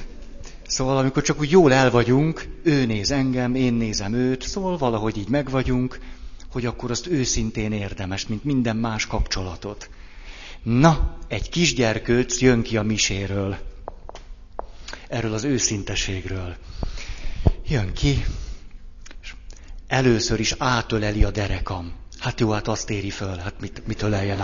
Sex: male